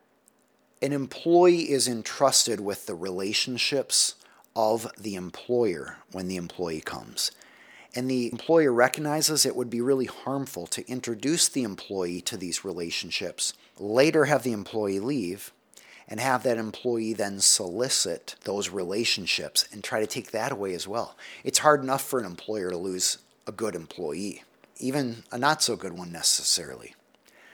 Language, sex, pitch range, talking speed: English, male, 100-135 Hz, 145 wpm